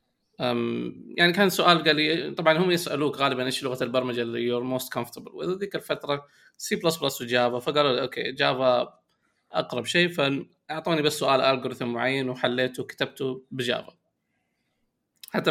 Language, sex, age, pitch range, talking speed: Arabic, male, 20-39, 125-150 Hz, 145 wpm